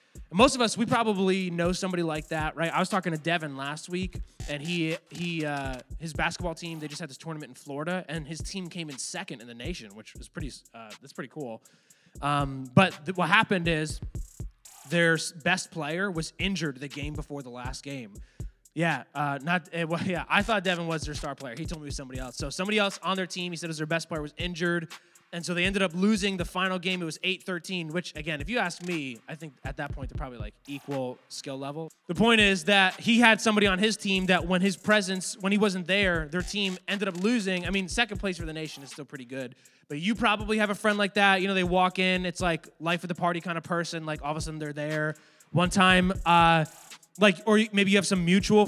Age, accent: 20-39, American